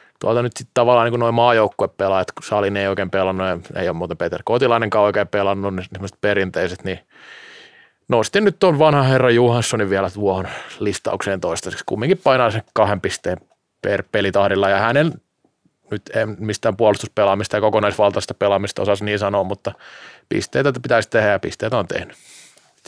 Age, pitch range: 30-49, 100-125 Hz